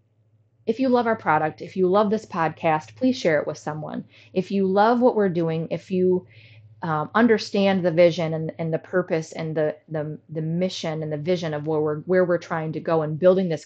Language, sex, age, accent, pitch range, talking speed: English, female, 30-49, American, 155-200 Hz, 220 wpm